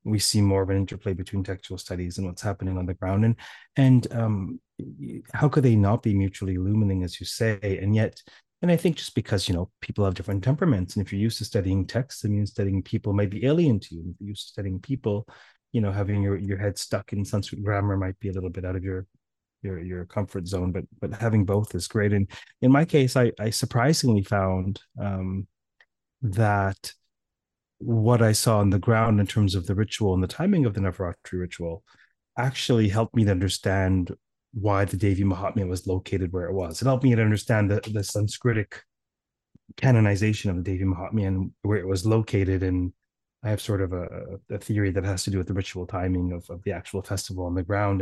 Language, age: English, 30-49